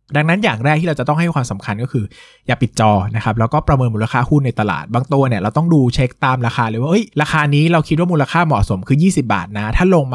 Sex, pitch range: male, 110-150 Hz